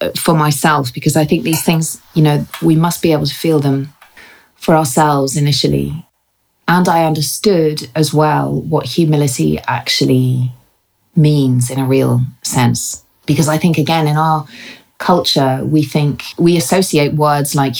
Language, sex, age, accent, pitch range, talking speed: English, female, 30-49, British, 135-160 Hz, 150 wpm